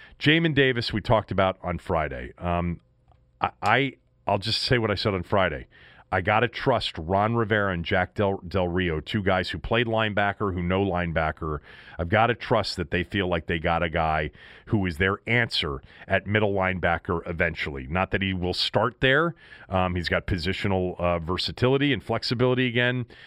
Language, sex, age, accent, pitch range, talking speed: English, male, 40-59, American, 90-120 Hz, 175 wpm